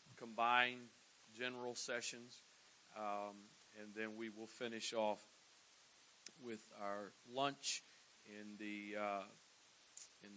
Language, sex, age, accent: English, male, 40-59, American